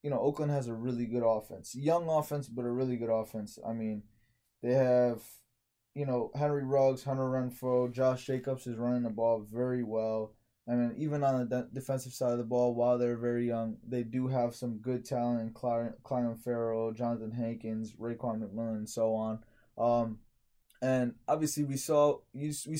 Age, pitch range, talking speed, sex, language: 20-39, 115-130 Hz, 185 wpm, male, English